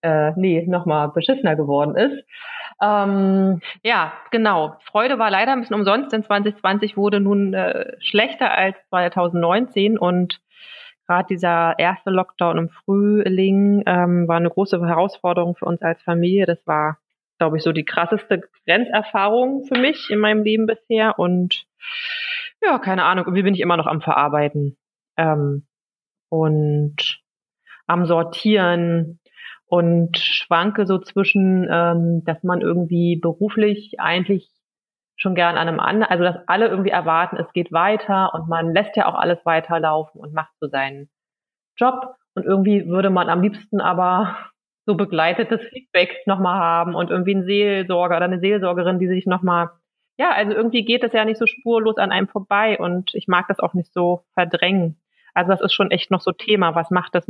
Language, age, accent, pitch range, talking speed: German, 30-49, German, 170-210 Hz, 160 wpm